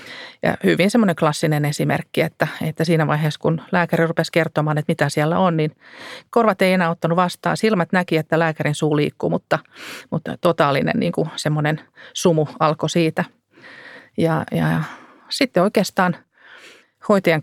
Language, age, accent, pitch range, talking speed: Finnish, 30-49, native, 150-180 Hz, 150 wpm